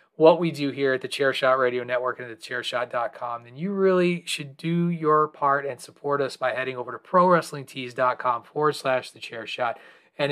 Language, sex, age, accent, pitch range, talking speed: English, male, 30-49, American, 130-170 Hz, 205 wpm